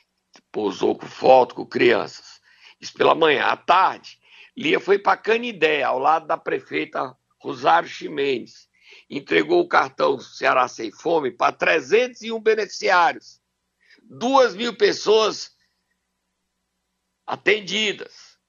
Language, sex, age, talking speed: Portuguese, male, 60-79, 105 wpm